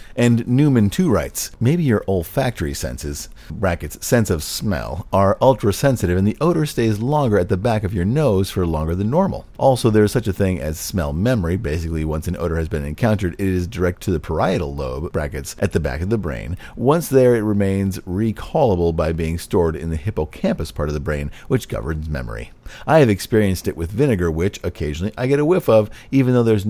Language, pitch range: English, 80-115 Hz